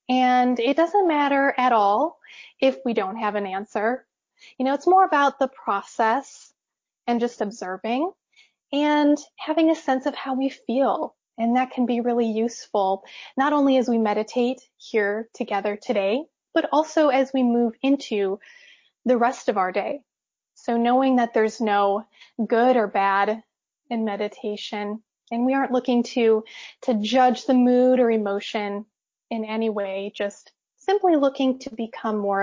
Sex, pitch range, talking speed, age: female, 215-270 Hz, 155 wpm, 10-29